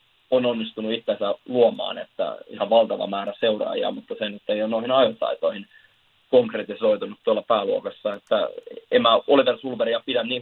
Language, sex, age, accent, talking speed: Finnish, male, 20-39, native, 150 wpm